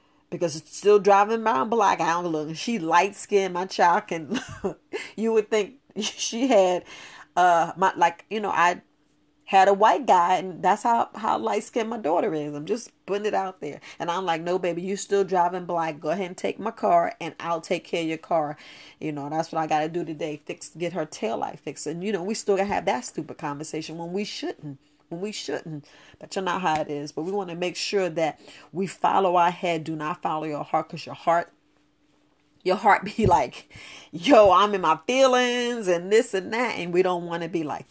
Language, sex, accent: English, female, American